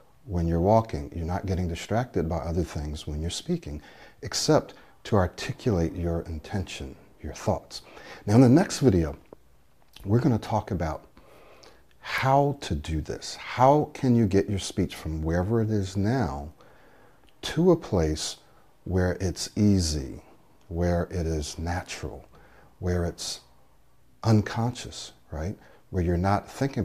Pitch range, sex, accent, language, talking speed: 80-105 Hz, male, American, English, 140 wpm